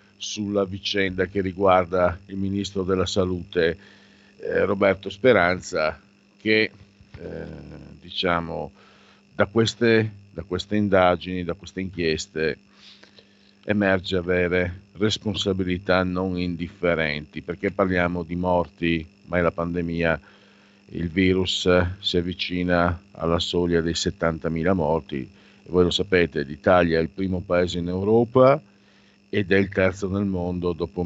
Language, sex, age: Italian, male, 50-69